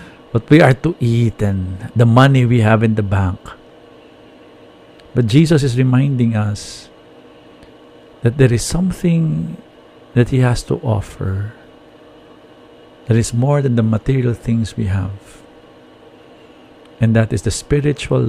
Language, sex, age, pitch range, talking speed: English, male, 50-69, 105-130 Hz, 135 wpm